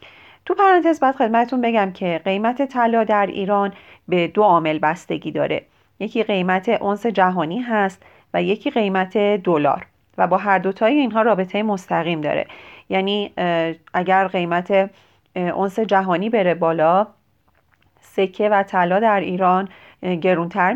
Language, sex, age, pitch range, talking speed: Persian, female, 40-59, 180-220 Hz, 130 wpm